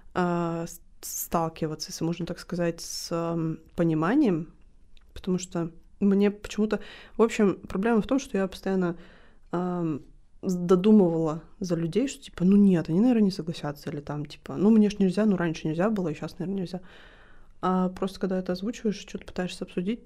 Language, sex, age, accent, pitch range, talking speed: Russian, female, 20-39, native, 170-205 Hz, 160 wpm